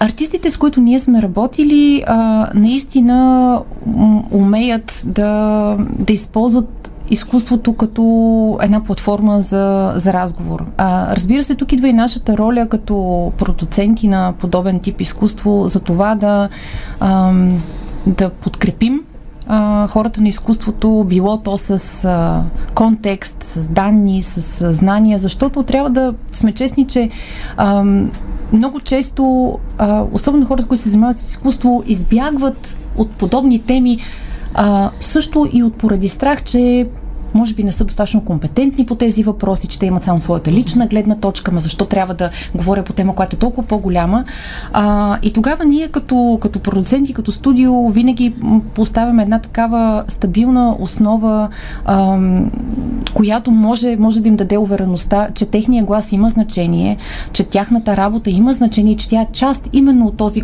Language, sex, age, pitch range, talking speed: Bulgarian, female, 30-49, 200-245 Hz, 140 wpm